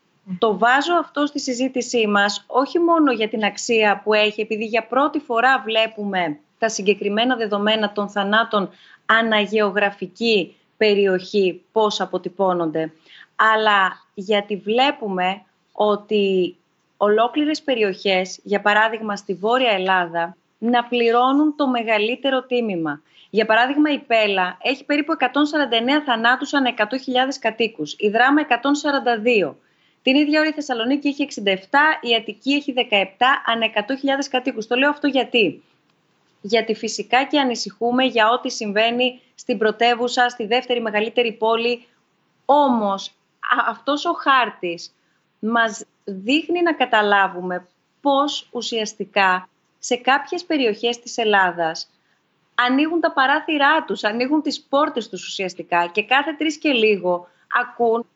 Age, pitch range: 30-49, 200-260 Hz